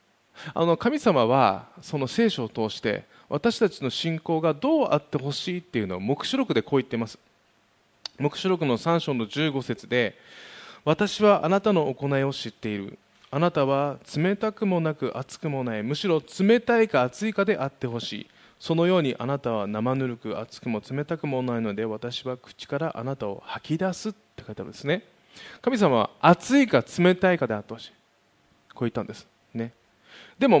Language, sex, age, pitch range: Japanese, male, 20-39, 115-175 Hz